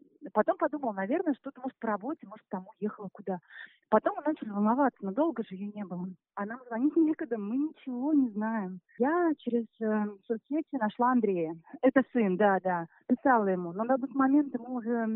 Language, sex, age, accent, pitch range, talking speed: Russian, female, 30-49, native, 195-255 Hz, 180 wpm